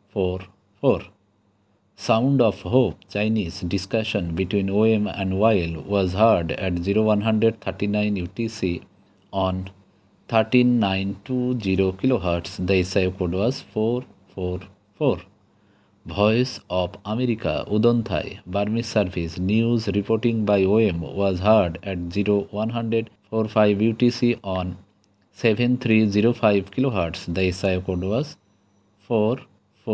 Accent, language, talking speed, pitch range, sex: Indian, English, 100 wpm, 95-115 Hz, male